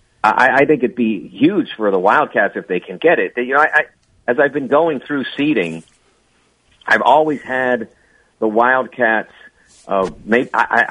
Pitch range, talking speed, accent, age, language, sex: 105-130 Hz, 180 wpm, American, 50-69, English, male